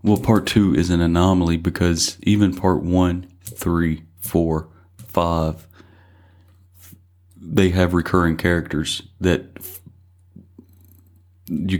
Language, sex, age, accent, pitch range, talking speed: English, male, 40-59, American, 85-95 Hz, 95 wpm